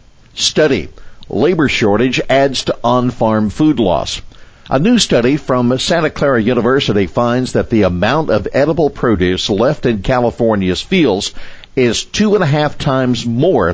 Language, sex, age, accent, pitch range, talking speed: English, male, 60-79, American, 95-125 Hz, 145 wpm